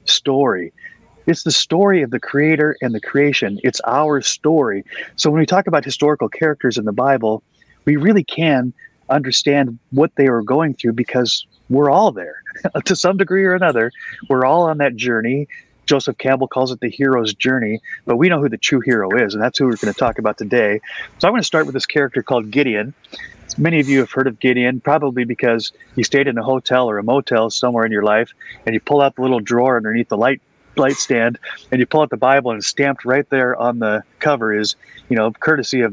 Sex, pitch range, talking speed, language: male, 115-140 Hz, 220 wpm, English